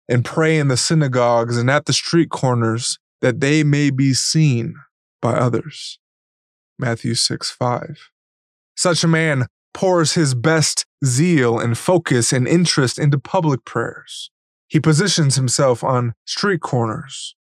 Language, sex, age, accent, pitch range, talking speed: English, male, 20-39, American, 120-150 Hz, 135 wpm